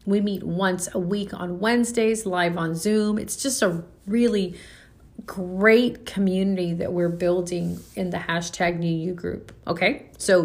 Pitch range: 175-210 Hz